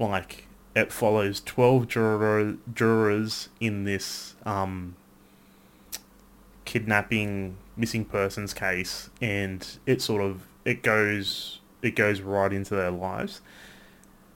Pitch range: 95-115 Hz